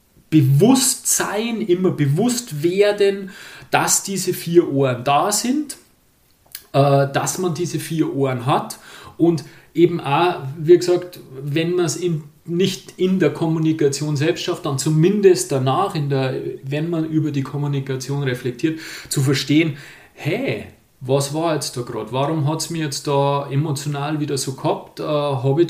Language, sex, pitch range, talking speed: German, male, 140-180 Hz, 145 wpm